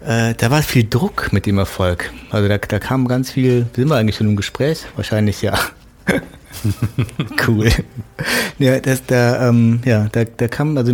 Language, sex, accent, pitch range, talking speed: German, male, German, 100-115 Hz, 175 wpm